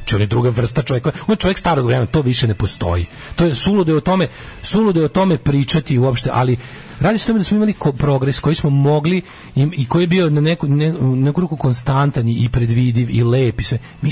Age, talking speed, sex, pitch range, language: 40-59, 225 wpm, male, 120-155 Hz, English